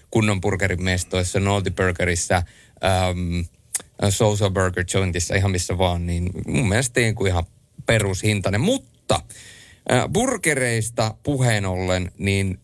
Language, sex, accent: Finnish, male, native